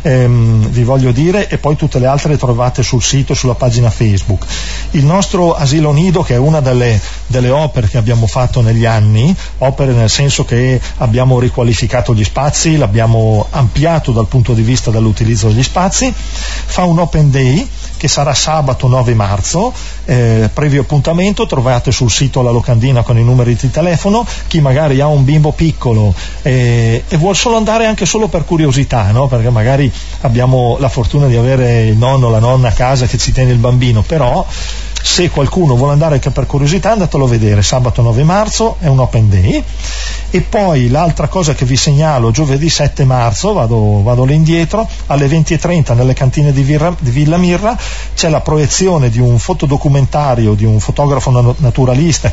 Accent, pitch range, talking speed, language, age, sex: native, 120-155 Hz, 175 wpm, Italian, 40-59, male